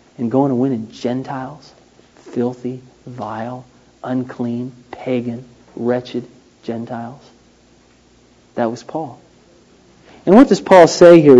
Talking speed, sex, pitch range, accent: 110 wpm, male, 130-180 Hz, American